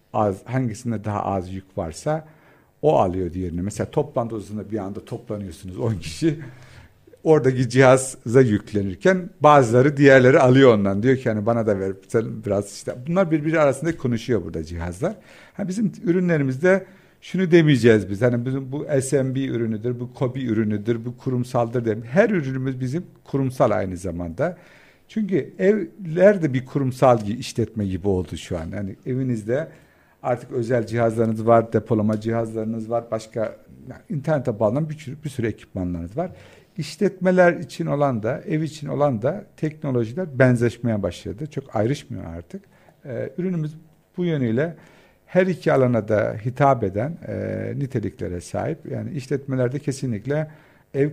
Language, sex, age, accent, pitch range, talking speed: Turkish, male, 60-79, native, 110-150 Hz, 140 wpm